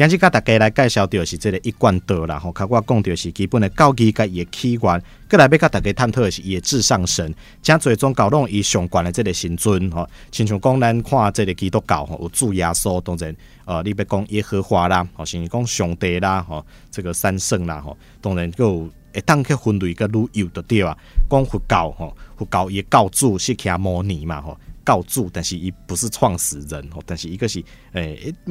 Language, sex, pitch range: Chinese, male, 85-115 Hz